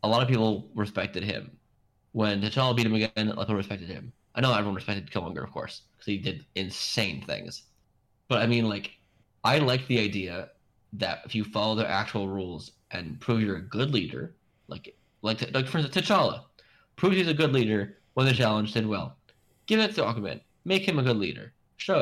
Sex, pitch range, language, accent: male, 105-130 Hz, English, American